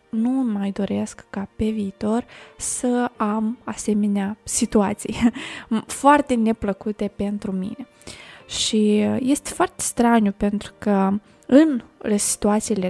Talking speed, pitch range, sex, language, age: 100 wpm, 205-250 Hz, female, Romanian, 20-39